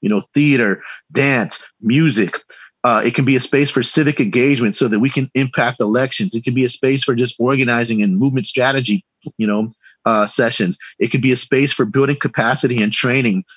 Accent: American